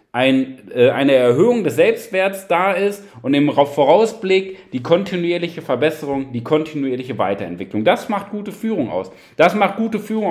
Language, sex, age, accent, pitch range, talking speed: German, male, 40-59, German, 155-215 Hz, 140 wpm